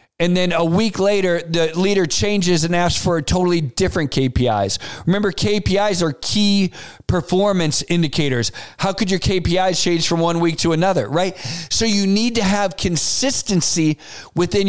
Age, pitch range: 40-59, 155-195 Hz